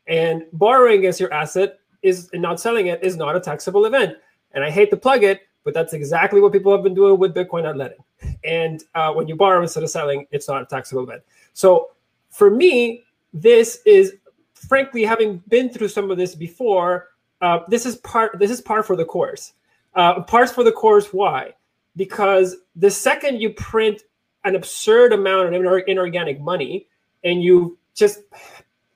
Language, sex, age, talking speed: English, male, 20-39, 190 wpm